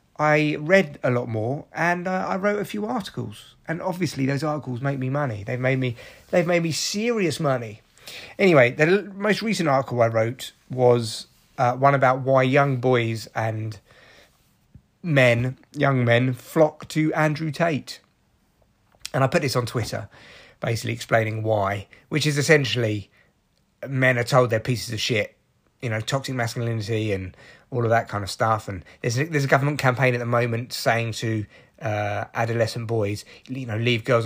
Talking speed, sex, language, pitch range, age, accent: 175 wpm, male, English, 115-145 Hz, 30-49, British